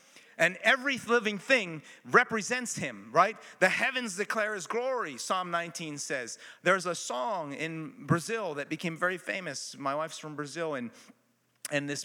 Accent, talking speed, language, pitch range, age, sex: American, 155 wpm, English, 140-200 Hz, 40-59, male